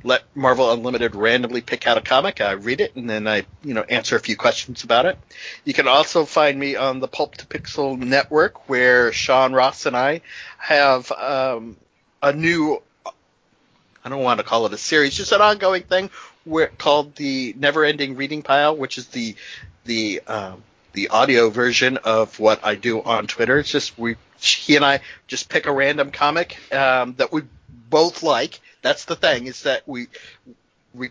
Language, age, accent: English, 50-69, American